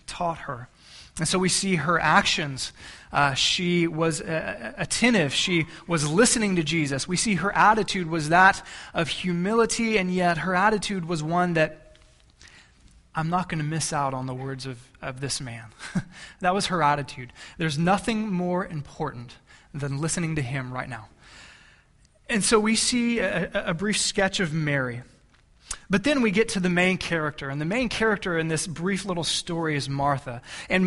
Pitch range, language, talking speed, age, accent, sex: 155-195 Hz, English, 175 wpm, 20-39, American, male